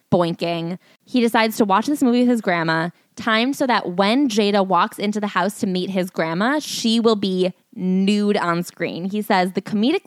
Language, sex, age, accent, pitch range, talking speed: English, female, 20-39, American, 175-220 Hz, 195 wpm